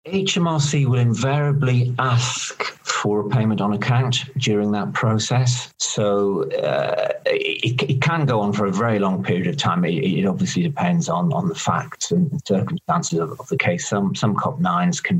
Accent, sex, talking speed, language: British, male, 180 wpm, English